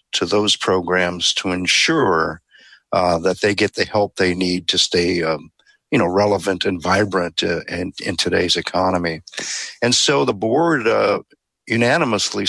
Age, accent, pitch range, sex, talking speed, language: 50-69, American, 95-115 Hz, male, 155 wpm, English